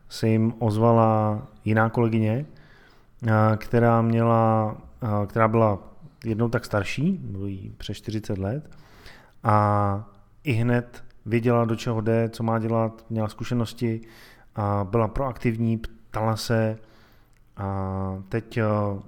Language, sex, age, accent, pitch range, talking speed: Czech, male, 30-49, native, 105-125 Hz, 105 wpm